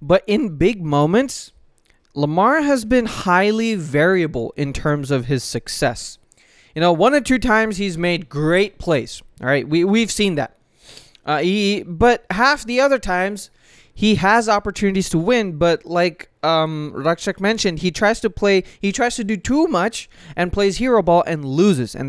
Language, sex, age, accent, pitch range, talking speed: English, male, 20-39, American, 140-190 Hz, 175 wpm